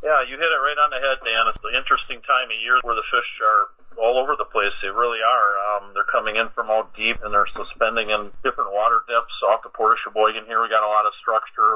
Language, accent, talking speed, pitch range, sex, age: English, American, 265 wpm, 105-120 Hz, male, 40-59